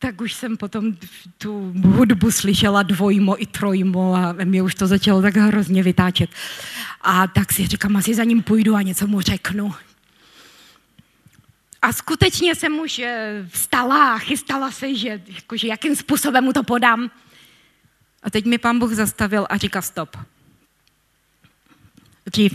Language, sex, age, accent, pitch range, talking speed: Czech, female, 20-39, native, 180-220 Hz, 145 wpm